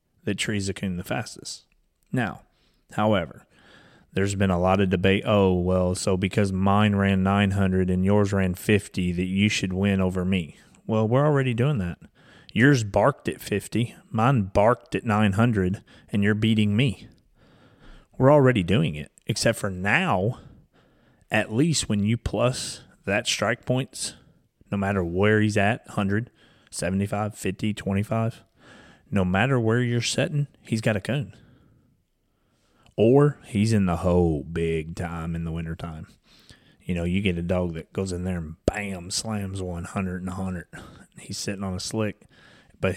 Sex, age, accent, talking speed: male, 30-49, American, 160 wpm